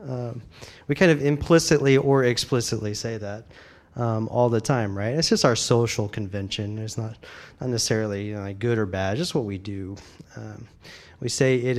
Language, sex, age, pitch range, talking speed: English, male, 30-49, 110-150 Hz, 190 wpm